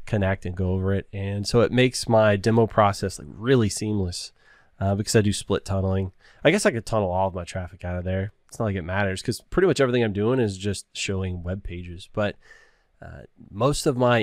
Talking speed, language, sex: 230 wpm, English, male